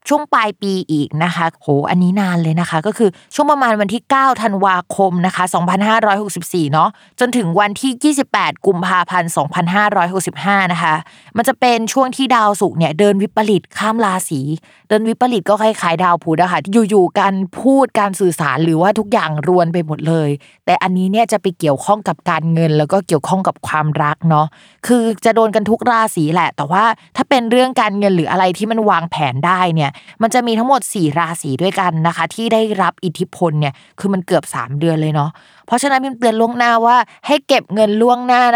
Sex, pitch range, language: female, 165-220 Hz, Thai